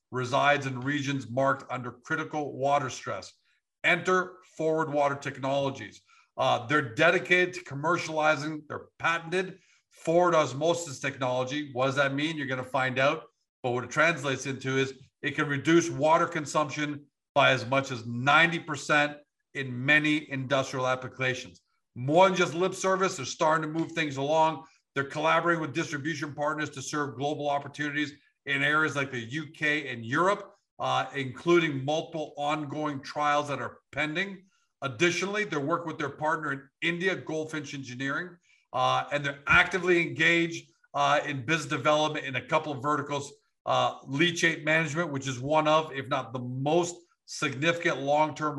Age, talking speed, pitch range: 50-69, 150 wpm, 135-165 Hz